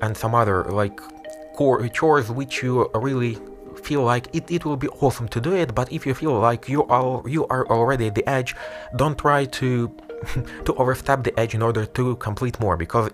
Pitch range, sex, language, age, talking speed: 105-135 Hz, male, English, 20-39, 205 wpm